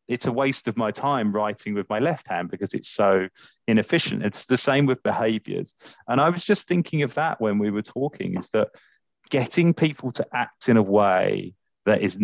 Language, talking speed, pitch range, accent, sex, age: English, 205 wpm, 115-155 Hz, British, male, 30-49